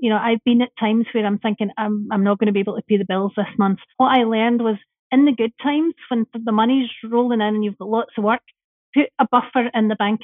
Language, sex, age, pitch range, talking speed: English, female, 40-59, 225-260 Hz, 275 wpm